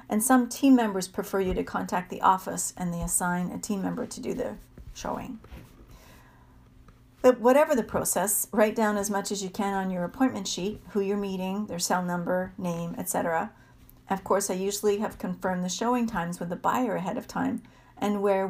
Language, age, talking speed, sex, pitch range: English, 50-69, 195 wpm, female, 185-225 Hz